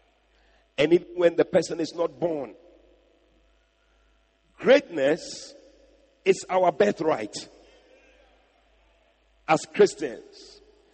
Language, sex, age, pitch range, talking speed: English, male, 50-69, 200-300 Hz, 75 wpm